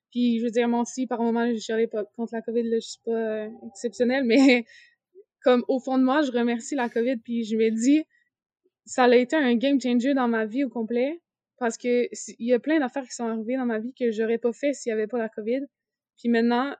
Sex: female